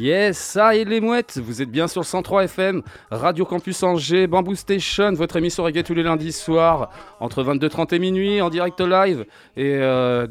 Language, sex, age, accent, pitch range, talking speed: French, male, 20-39, French, 130-170 Hz, 190 wpm